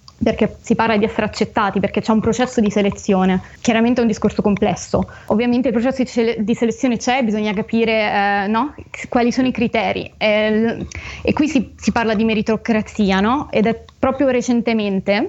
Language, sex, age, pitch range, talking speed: Italian, female, 20-39, 210-235 Hz, 170 wpm